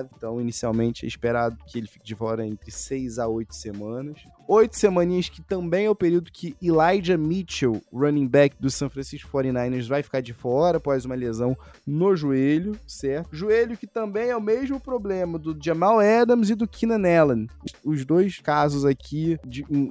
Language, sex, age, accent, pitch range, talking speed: Portuguese, male, 20-39, Brazilian, 120-175 Hz, 180 wpm